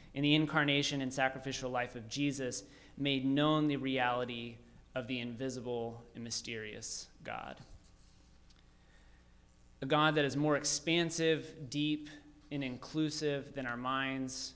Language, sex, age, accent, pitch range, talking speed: English, male, 30-49, American, 115-145 Hz, 130 wpm